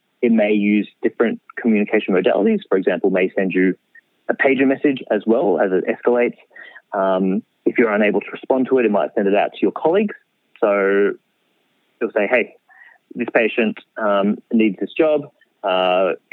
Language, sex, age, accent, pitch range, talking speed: English, male, 30-49, Australian, 100-125 Hz, 175 wpm